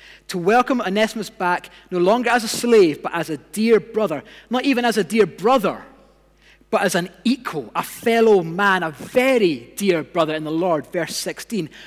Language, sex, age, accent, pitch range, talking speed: English, male, 30-49, British, 175-235 Hz, 180 wpm